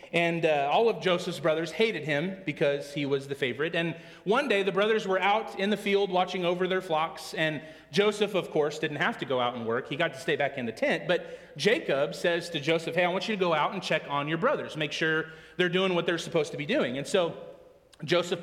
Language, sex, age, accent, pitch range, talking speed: English, male, 30-49, American, 155-195 Hz, 245 wpm